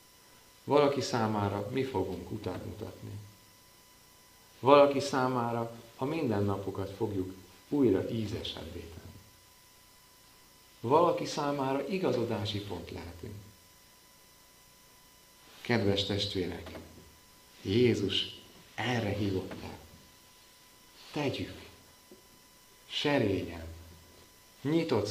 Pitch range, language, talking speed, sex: 90-115 Hz, Hungarian, 60 wpm, male